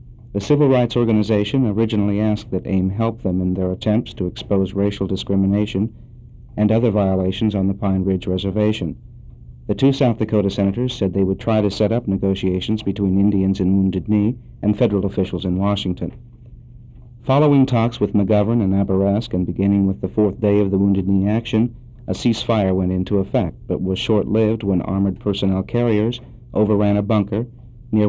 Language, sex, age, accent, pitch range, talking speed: English, male, 50-69, American, 95-115 Hz, 175 wpm